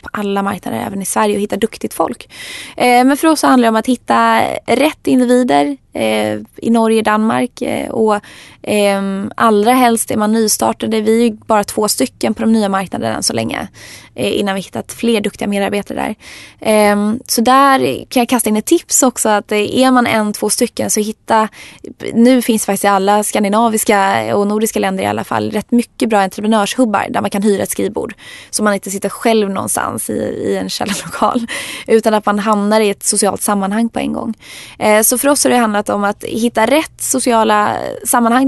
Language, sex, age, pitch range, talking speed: Swedish, female, 20-39, 205-240 Hz, 190 wpm